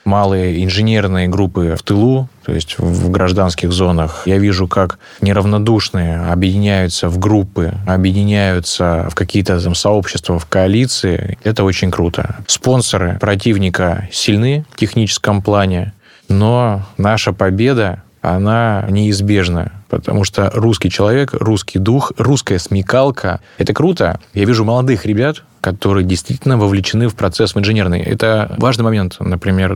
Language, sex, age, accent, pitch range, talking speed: Russian, male, 20-39, native, 90-110 Hz, 125 wpm